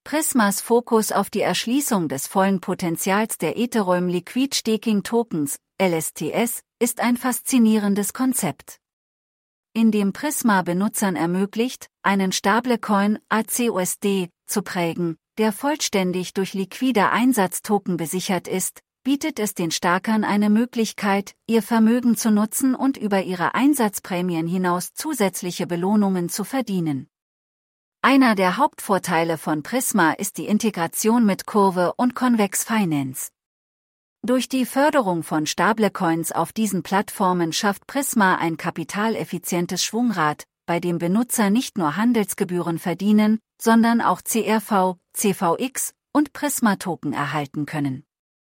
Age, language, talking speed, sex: 40-59, English, 115 wpm, female